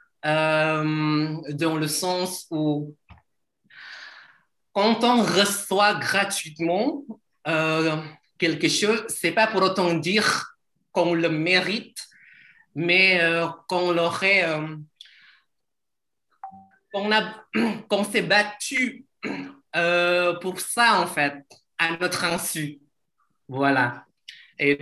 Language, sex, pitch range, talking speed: Indonesian, male, 150-185 Hz, 95 wpm